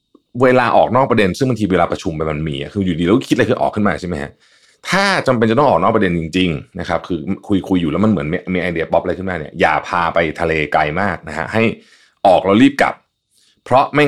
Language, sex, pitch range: Thai, male, 85-120 Hz